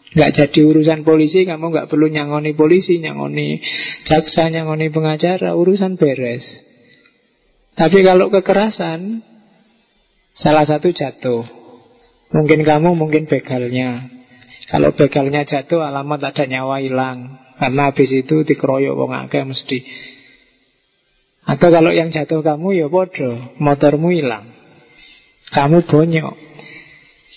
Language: Indonesian